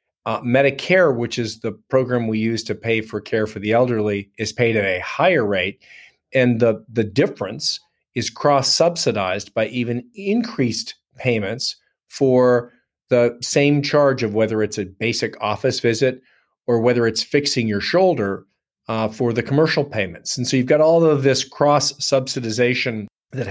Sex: male